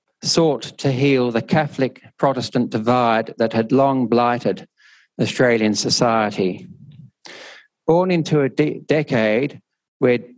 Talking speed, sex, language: 100 wpm, male, English